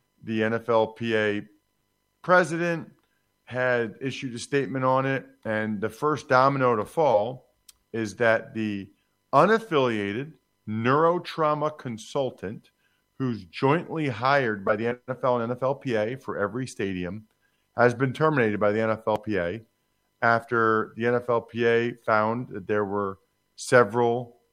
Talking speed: 115 wpm